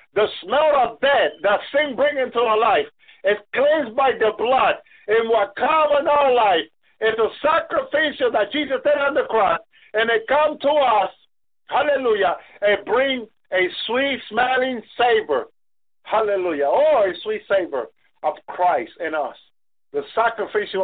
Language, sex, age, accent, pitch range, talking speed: English, male, 50-69, American, 215-285 Hz, 155 wpm